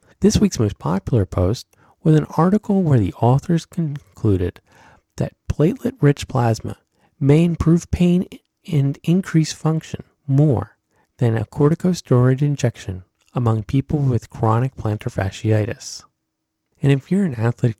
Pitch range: 110-150 Hz